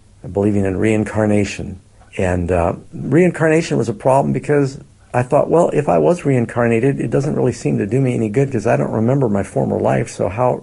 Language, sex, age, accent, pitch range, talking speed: English, male, 50-69, American, 95-115 Hz, 200 wpm